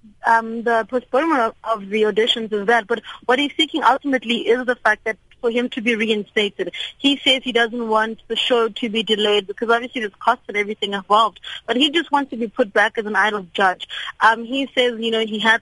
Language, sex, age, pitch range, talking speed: English, female, 30-49, 215-245 Hz, 225 wpm